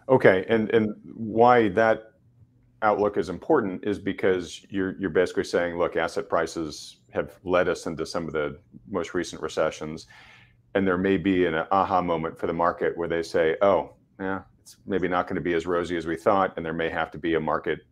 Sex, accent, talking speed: male, American, 205 wpm